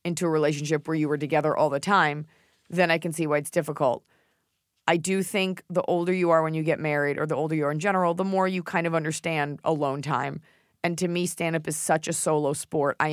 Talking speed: 240 wpm